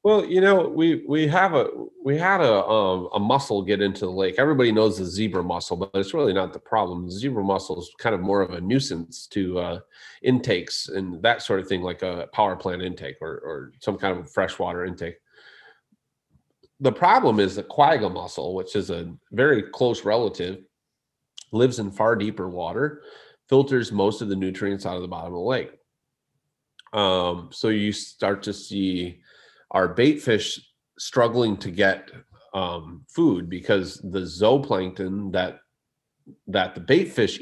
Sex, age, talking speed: male, 30-49, 175 wpm